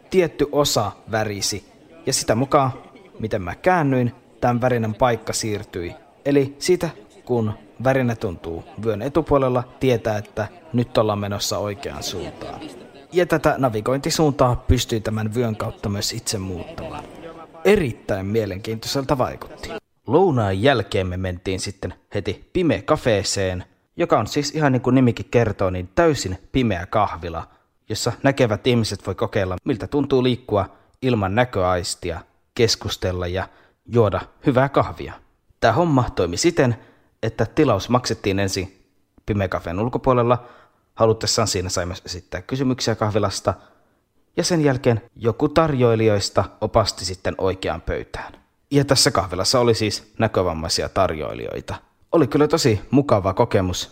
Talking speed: 125 wpm